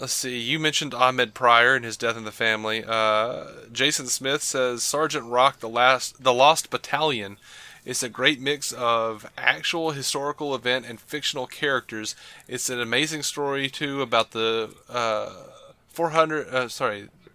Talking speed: 155 wpm